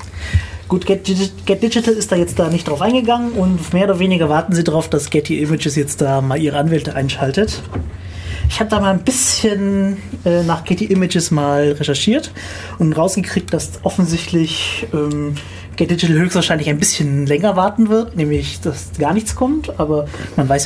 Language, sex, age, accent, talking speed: German, male, 30-49, German, 170 wpm